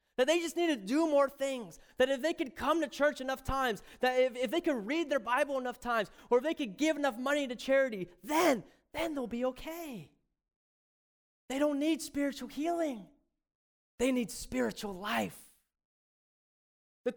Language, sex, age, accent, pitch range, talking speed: English, male, 30-49, American, 210-295 Hz, 180 wpm